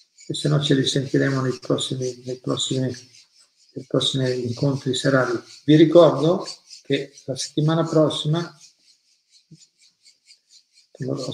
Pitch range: 130-145 Hz